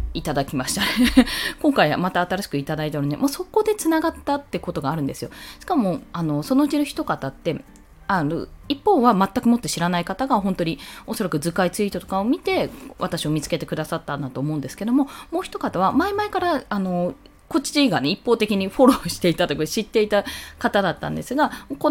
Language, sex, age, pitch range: Japanese, female, 20-39, 175-290 Hz